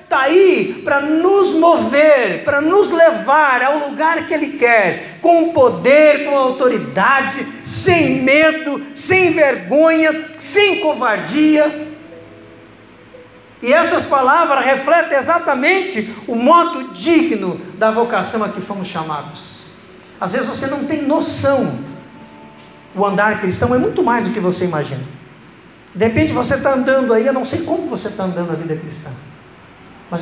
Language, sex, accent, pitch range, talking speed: Portuguese, male, Brazilian, 205-310 Hz, 140 wpm